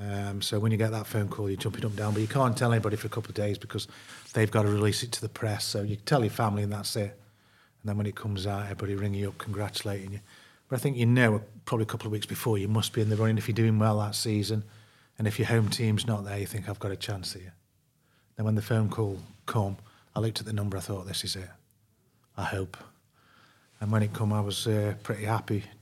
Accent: British